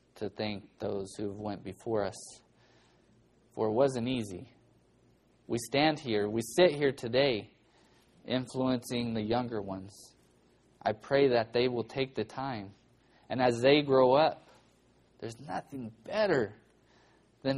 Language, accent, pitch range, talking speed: English, American, 110-135 Hz, 135 wpm